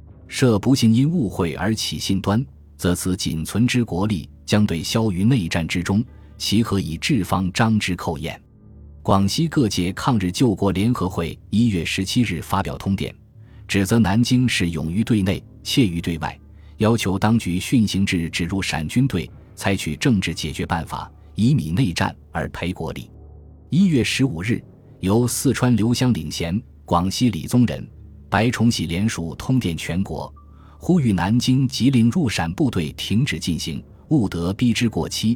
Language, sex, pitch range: Chinese, male, 85-115 Hz